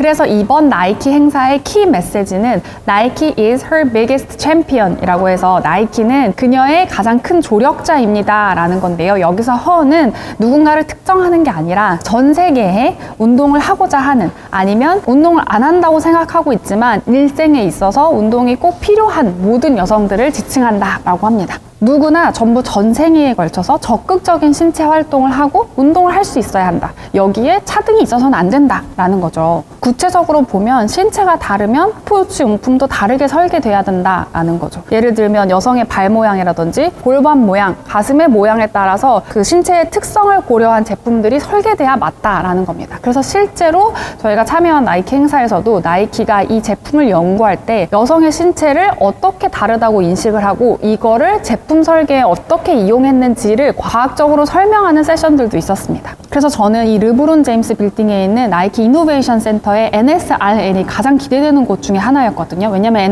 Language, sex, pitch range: Korean, female, 205-310 Hz